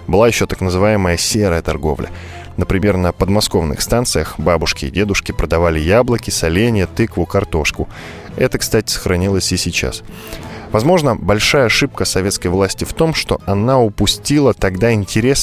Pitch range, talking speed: 90-115 Hz, 135 wpm